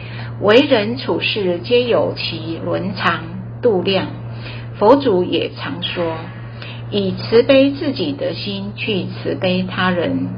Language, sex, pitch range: Chinese, female, 115-180 Hz